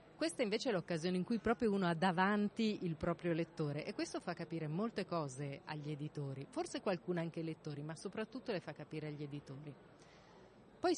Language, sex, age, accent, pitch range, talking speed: Italian, female, 30-49, native, 160-195 Hz, 185 wpm